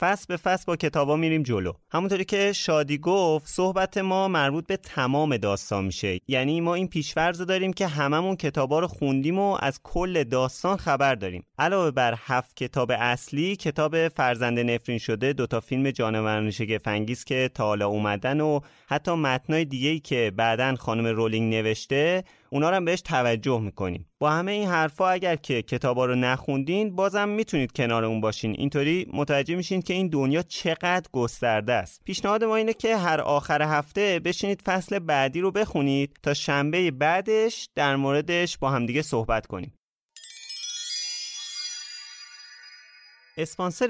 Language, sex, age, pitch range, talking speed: Persian, male, 30-49, 120-175 Hz, 150 wpm